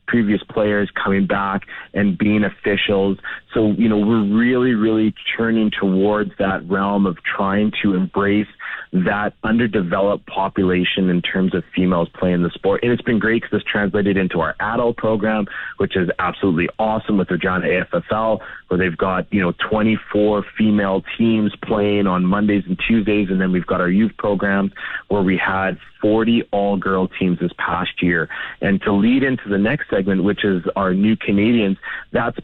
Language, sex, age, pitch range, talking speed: English, male, 30-49, 95-110 Hz, 170 wpm